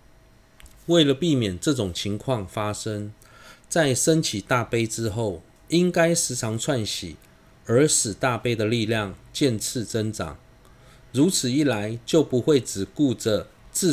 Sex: male